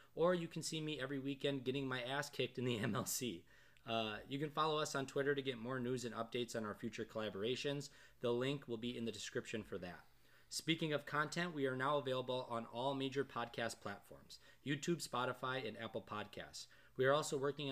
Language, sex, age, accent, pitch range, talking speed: English, male, 20-39, American, 115-140 Hz, 205 wpm